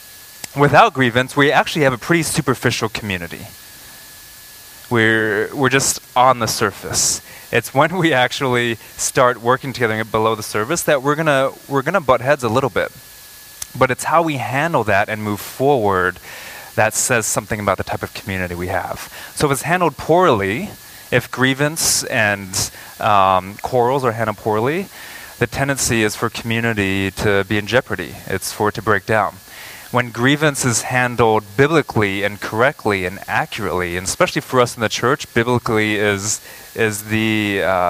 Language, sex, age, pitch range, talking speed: English, male, 20-39, 105-130 Hz, 165 wpm